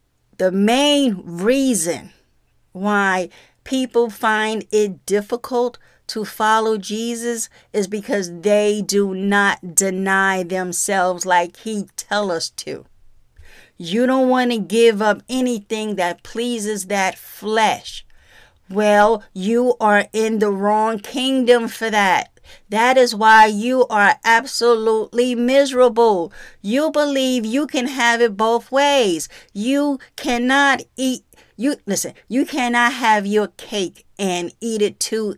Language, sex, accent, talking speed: English, female, American, 120 wpm